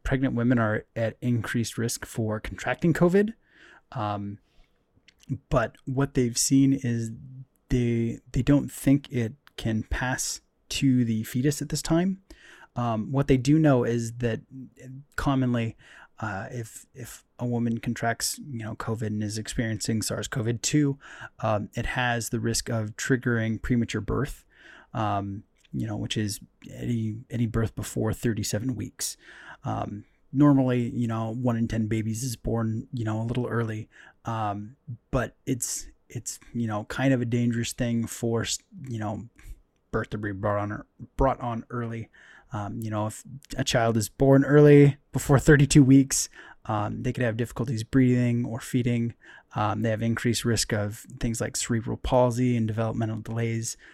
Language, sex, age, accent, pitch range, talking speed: English, male, 20-39, American, 110-130 Hz, 160 wpm